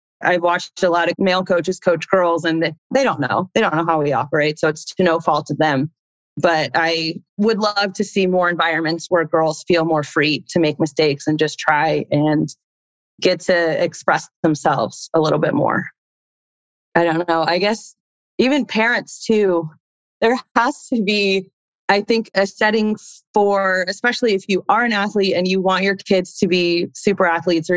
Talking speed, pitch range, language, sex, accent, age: 190 wpm, 160-195 Hz, English, female, American, 30-49